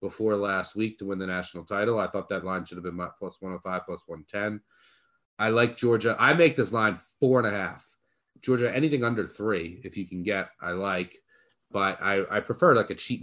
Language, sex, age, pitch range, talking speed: English, male, 30-49, 100-130 Hz, 220 wpm